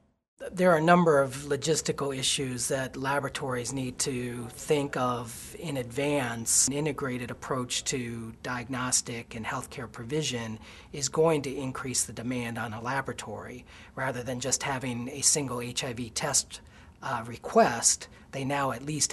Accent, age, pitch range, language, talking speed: American, 40-59, 120-140 Hz, English, 145 wpm